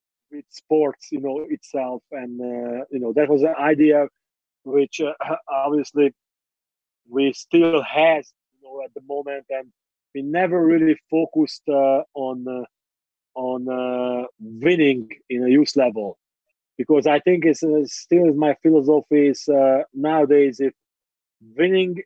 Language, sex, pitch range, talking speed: Romanian, male, 135-155 Hz, 140 wpm